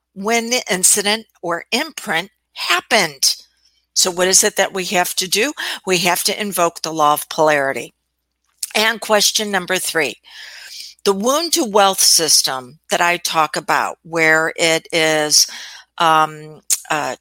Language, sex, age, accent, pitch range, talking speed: English, female, 60-79, American, 165-210 Hz, 145 wpm